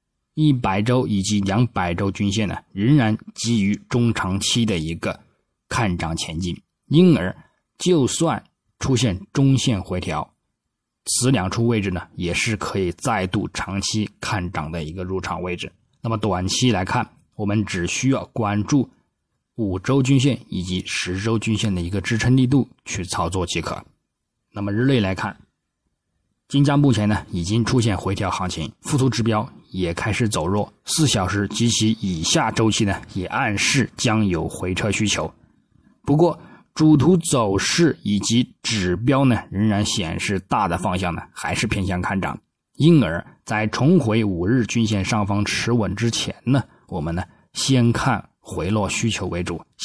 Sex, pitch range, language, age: male, 95-120 Hz, Chinese, 20-39